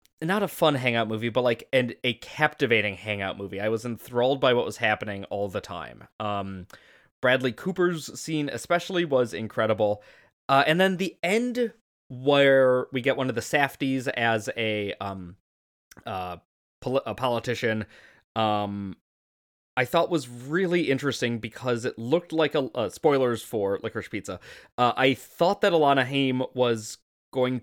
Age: 20-39